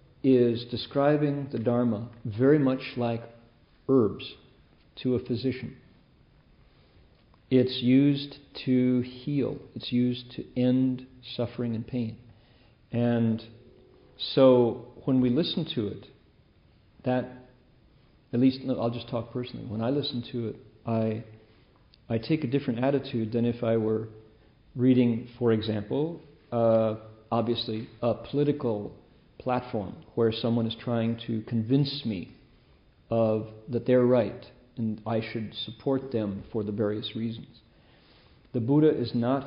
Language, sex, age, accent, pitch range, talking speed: English, male, 50-69, American, 110-130 Hz, 125 wpm